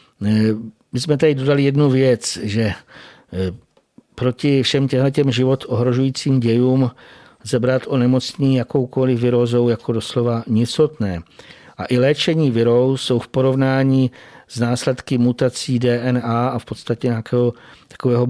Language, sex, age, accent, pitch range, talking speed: Czech, male, 50-69, native, 115-130 Hz, 120 wpm